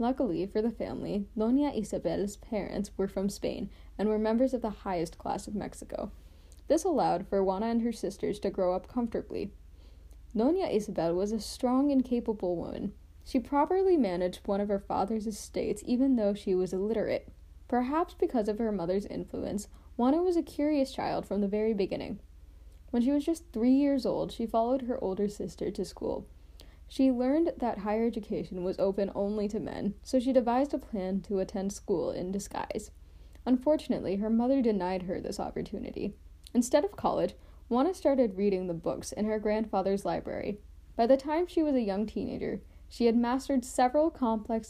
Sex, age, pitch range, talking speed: female, 10-29, 195-255 Hz, 175 wpm